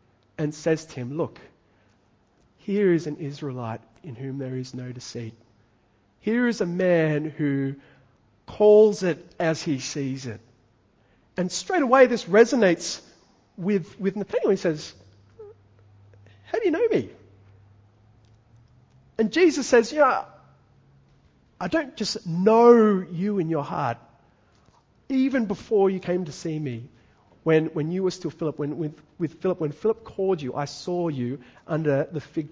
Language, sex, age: English, male, 40-59